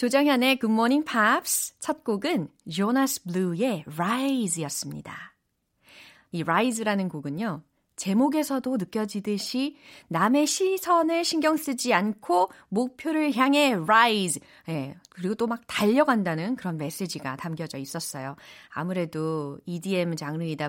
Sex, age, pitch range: female, 30-49, 170-260 Hz